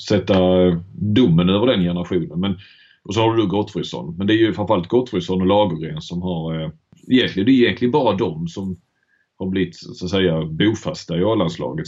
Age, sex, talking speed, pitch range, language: 30-49, male, 190 wpm, 90-105 Hz, Swedish